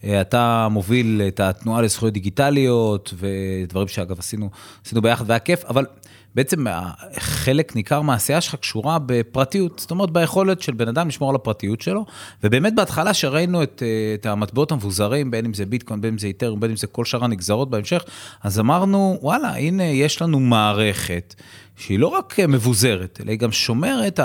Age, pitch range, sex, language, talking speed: 30-49, 105-145 Hz, male, Hebrew, 170 wpm